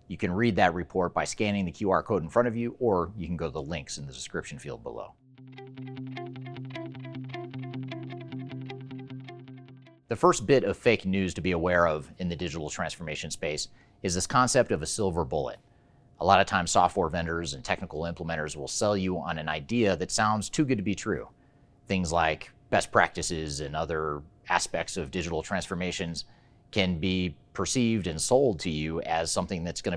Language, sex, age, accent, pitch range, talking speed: English, male, 30-49, American, 85-115 Hz, 180 wpm